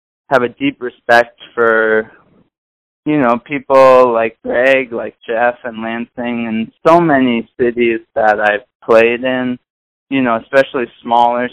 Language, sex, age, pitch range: English, male, 20-39, 110-125 Hz